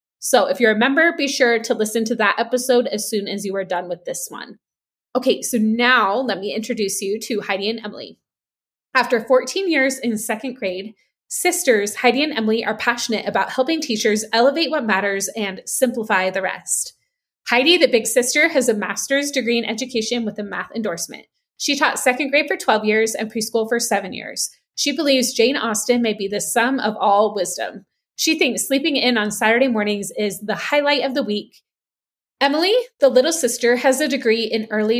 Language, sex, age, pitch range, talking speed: English, female, 20-39, 210-265 Hz, 195 wpm